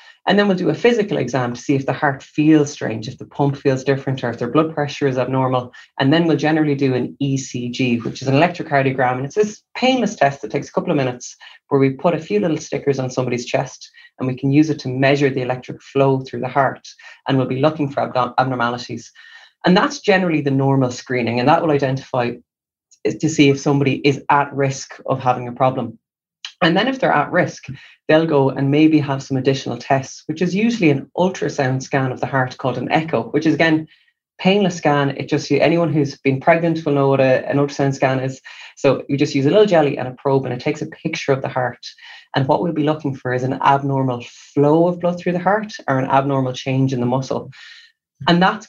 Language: English